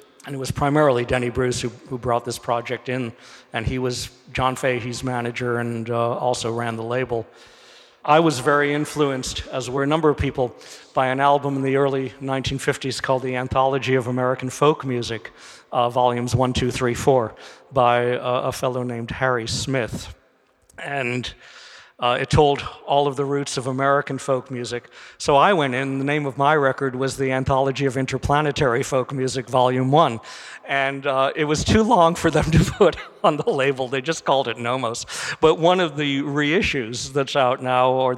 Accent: American